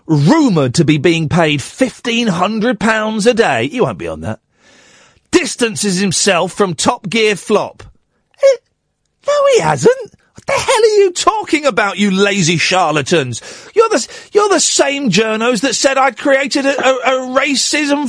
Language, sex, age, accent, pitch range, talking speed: English, male, 40-59, British, 195-300 Hz, 165 wpm